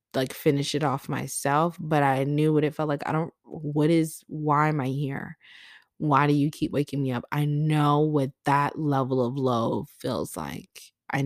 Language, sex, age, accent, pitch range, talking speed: English, female, 20-39, American, 135-155 Hz, 195 wpm